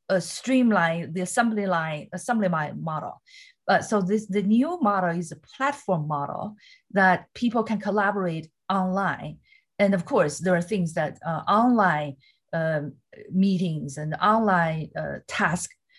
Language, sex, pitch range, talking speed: English, female, 165-205 Hz, 140 wpm